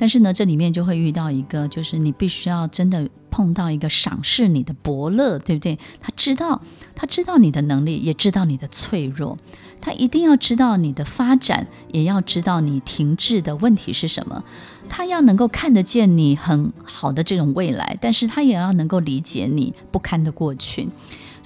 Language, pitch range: Chinese, 150-195 Hz